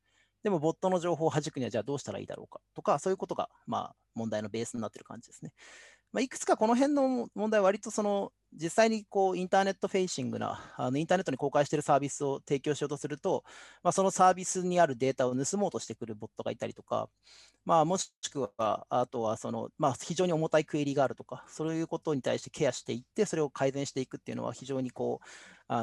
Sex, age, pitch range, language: male, 40-59, 135-195 Hz, Japanese